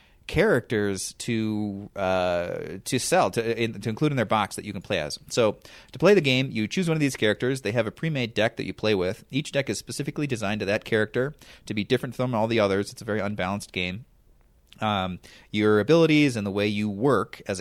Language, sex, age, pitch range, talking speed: English, male, 30-49, 100-130 Hz, 220 wpm